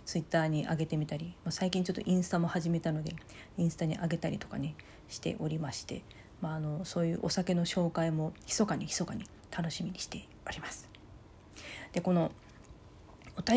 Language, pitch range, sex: Japanese, 160-200 Hz, female